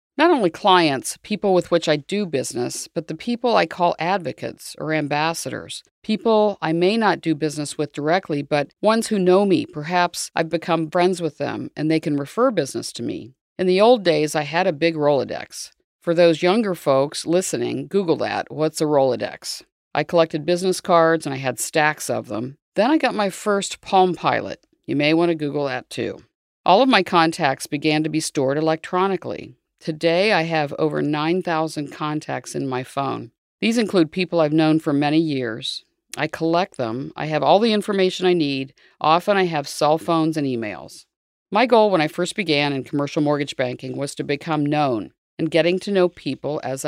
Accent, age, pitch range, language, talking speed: American, 50-69, 150-185 Hz, English, 190 wpm